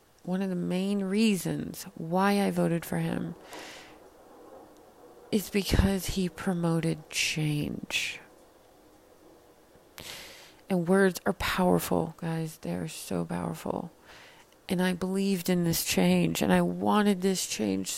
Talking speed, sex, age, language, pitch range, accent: 115 wpm, female, 30-49, English, 155-195 Hz, American